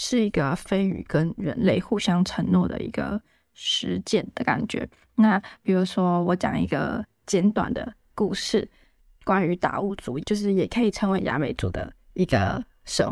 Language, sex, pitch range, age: Chinese, female, 185-210 Hz, 20-39